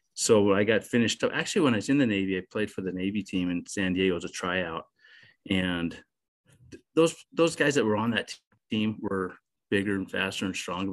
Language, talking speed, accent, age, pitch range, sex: English, 225 wpm, American, 30-49, 95-110 Hz, male